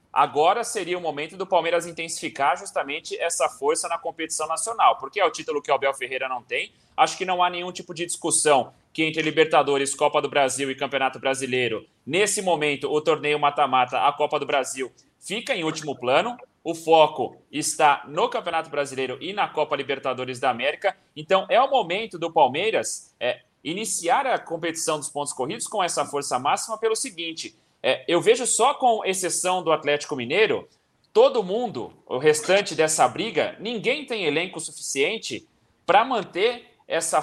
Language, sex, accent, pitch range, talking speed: Portuguese, male, Brazilian, 150-210 Hz, 170 wpm